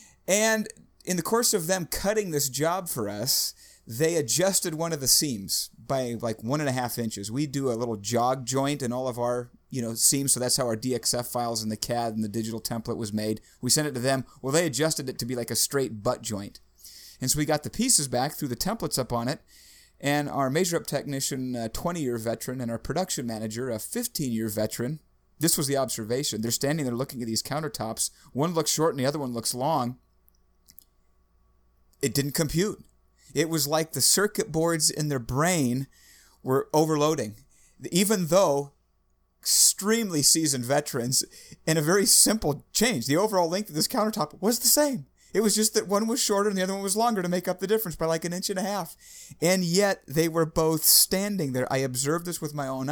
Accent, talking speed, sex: American, 210 wpm, male